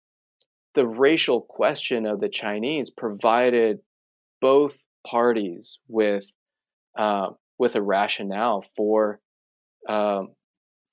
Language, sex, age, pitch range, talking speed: English, male, 20-39, 100-120 Hz, 90 wpm